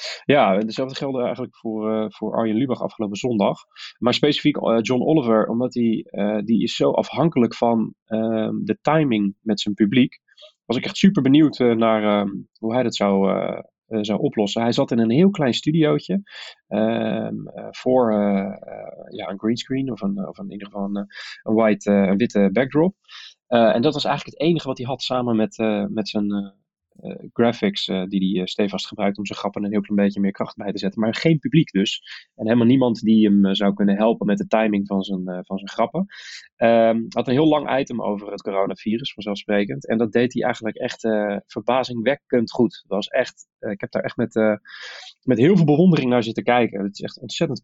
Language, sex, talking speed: Dutch, male, 205 wpm